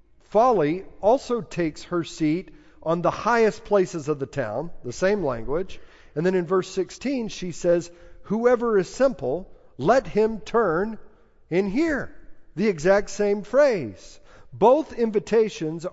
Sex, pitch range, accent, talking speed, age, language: male, 135-200 Hz, American, 135 wpm, 50-69, English